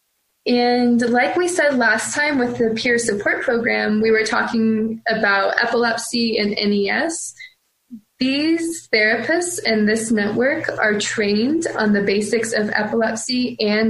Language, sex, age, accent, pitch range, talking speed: English, female, 20-39, American, 210-245 Hz, 135 wpm